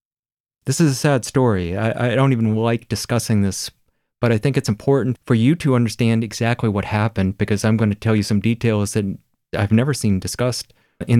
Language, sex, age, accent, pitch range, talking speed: English, male, 30-49, American, 105-125 Hz, 205 wpm